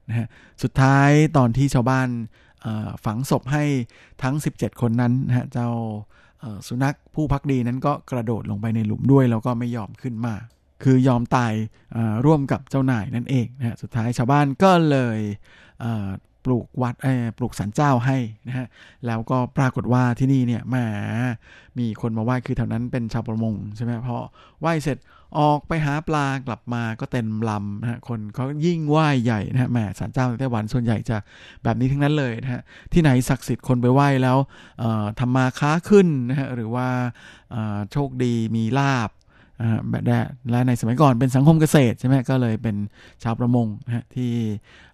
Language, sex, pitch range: Thai, male, 115-135 Hz